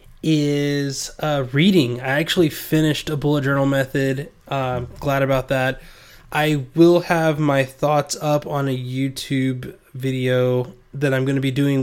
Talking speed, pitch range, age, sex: 155 wpm, 130-160 Hz, 20-39, male